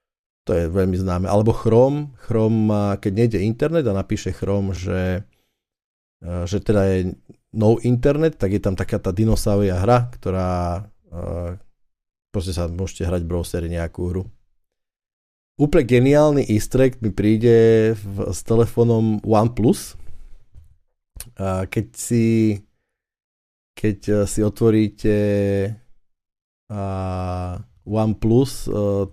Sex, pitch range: male, 95-110 Hz